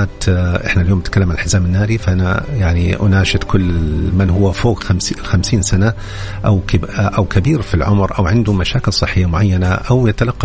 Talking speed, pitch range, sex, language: 155 wpm, 95-105 Hz, male, English